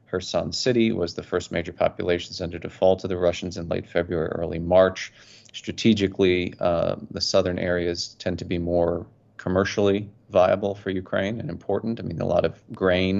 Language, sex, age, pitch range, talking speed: English, male, 30-49, 95-115 Hz, 175 wpm